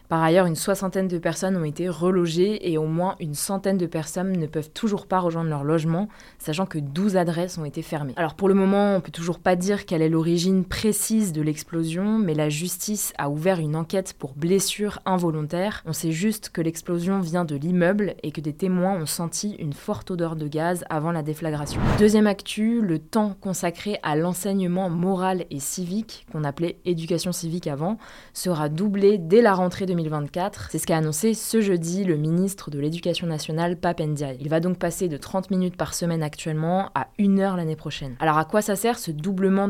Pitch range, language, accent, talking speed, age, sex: 160-195 Hz, French, French, 205 wpm, 20-39, female